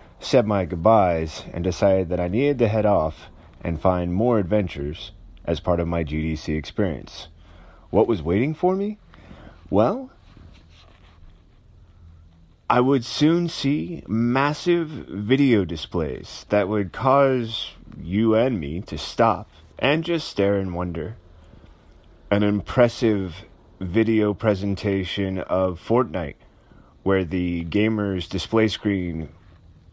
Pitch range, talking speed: 85-110 Hz, 115 wpm